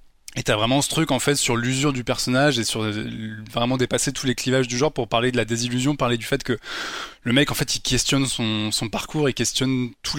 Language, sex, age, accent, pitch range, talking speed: French, male, 20-39, French, 115-145 Hz, 240 wpm